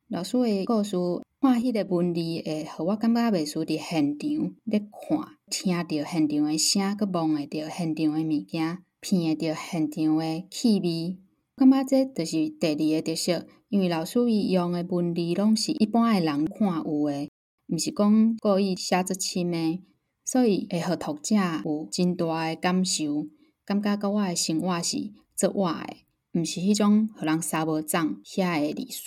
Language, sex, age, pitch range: English, female, 10-29, 160-205 Hz